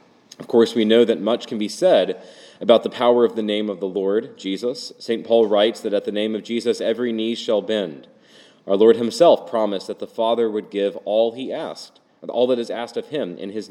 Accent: American